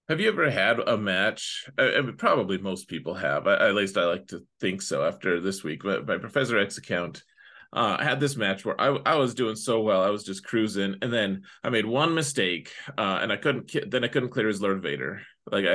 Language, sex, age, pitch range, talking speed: English, male, 30-49, 100-140 Hz, 235 wpm